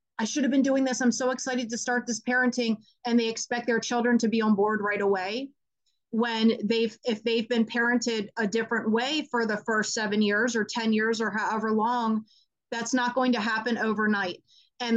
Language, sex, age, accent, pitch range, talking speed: English, female, 30-49, American, 215-235 Hz, 205 wpm